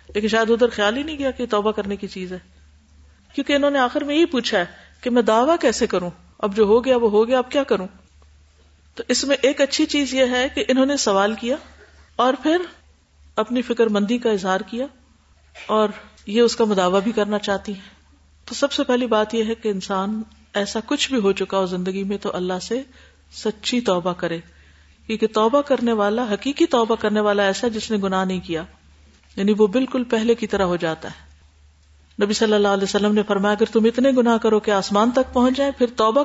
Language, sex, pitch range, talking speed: Urdu, female, 190-245 Hz, 215 wpm